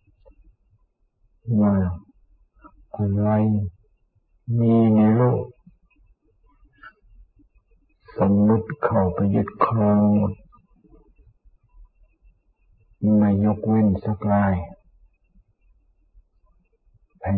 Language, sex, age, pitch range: Thai, male, 50-69, 95-110 Hz